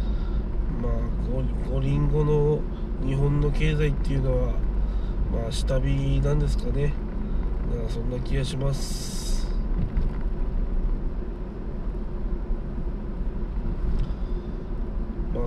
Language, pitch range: Japanese, 90-145 Hz